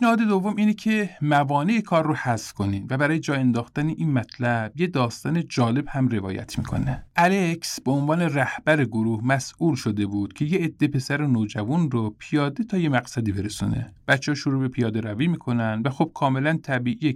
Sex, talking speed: male, 175 wpm